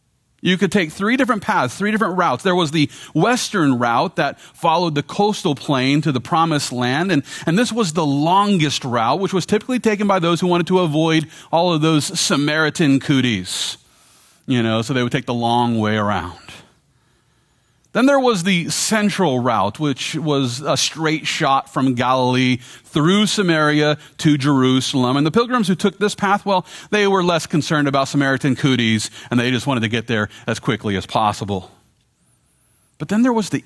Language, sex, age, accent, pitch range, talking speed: English, male, 40-59, American, 125-180 Hz, 185 wpm